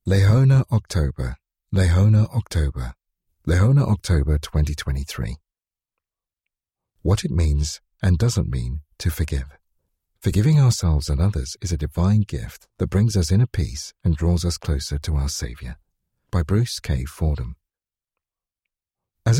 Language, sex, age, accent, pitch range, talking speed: English, male, 50-69, British, 80-115 Hz, 125 wpm